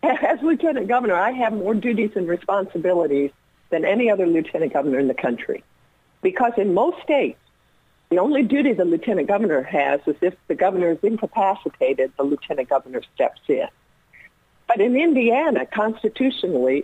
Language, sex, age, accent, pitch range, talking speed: English, female, 60-79, American, 150-225 Hz, 155 wpm